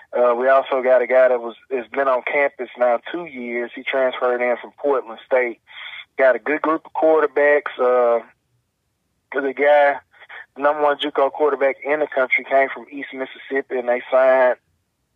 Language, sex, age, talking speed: English, male, 30-49, 175 wpm